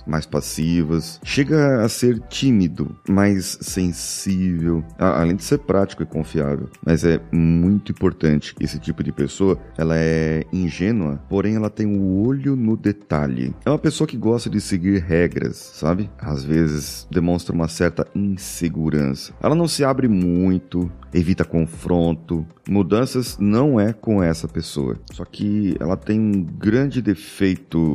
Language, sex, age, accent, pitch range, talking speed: Portuguese, male, 30-49, Brazilian, 80-115 Hz, 145 wpm